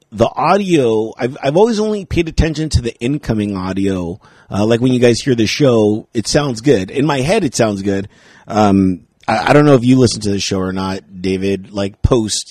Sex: male